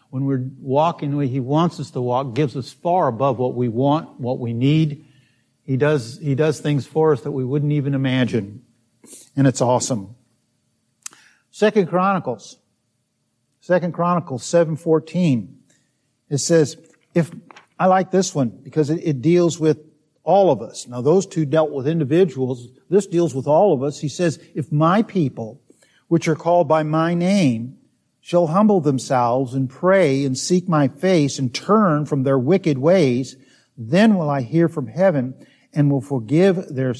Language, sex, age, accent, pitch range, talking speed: English, male, 50-69, American, 130-170 Hz, 165 wpm